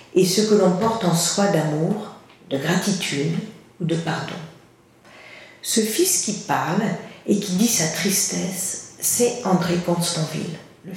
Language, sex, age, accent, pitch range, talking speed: French, female, 50-69, French, 170-215 Hz, 140 wpm